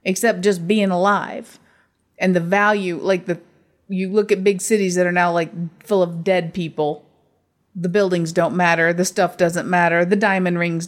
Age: 30-49